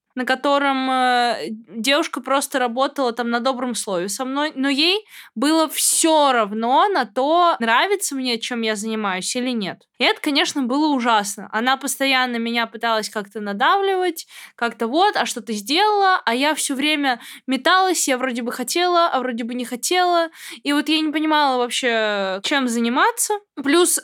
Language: Russian